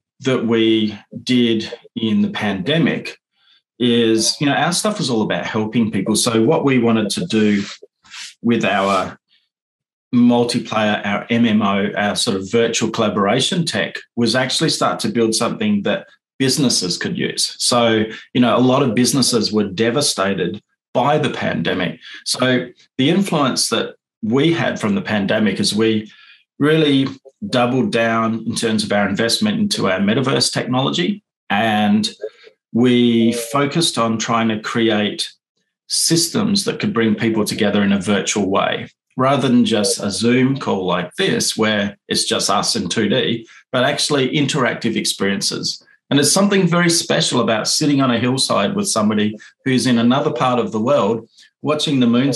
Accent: Australian